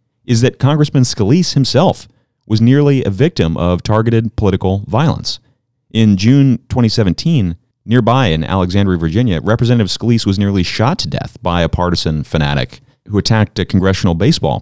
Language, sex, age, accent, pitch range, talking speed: English, male, 30-49, American, 85-120 Hz, 150 wpm